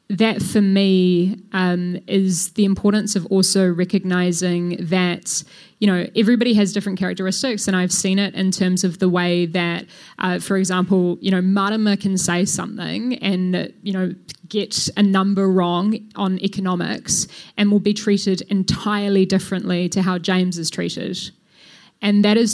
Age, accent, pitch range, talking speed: 10-29, Australian, 180-200 Hz, 155 wpm